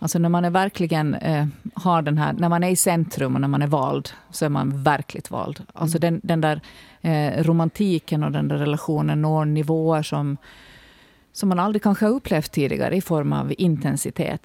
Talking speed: 185 wpm